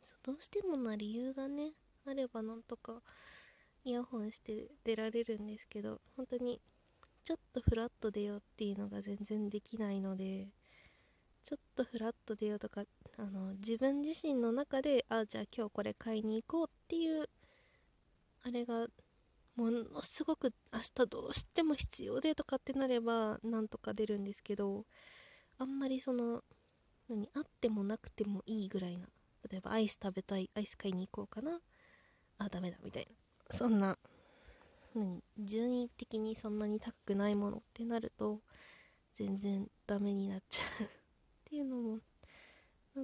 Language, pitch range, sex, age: Japanese, 205-255 Hz, female, 20-39